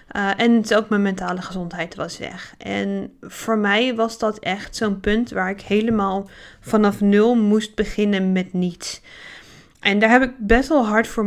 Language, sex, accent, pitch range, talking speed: Dutch, female, Dutch, 190-220 Hz, 175 wpm